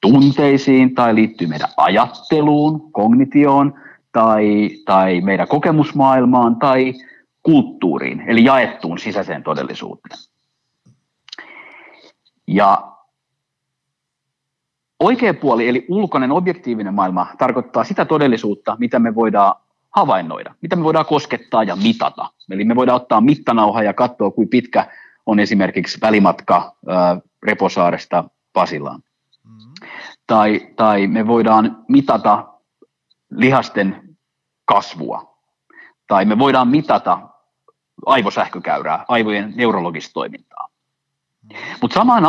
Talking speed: 95 wpm